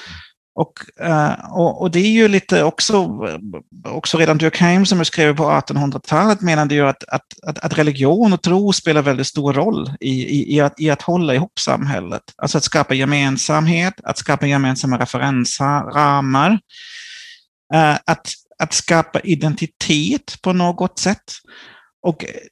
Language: Swedish